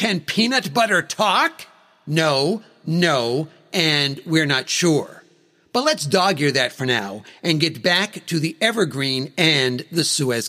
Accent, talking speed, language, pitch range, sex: American, 150 wpm, English, 140-190 Hz, male